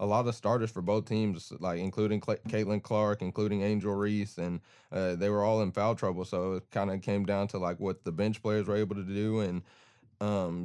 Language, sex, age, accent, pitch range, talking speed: English, male, 20-39, American, 95-110 Hz, 225 wpm